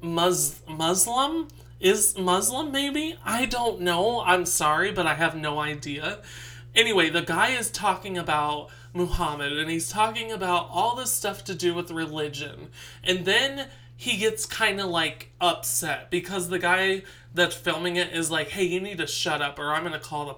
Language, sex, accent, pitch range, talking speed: English, male, American, 150-185 Hz, 175 wpm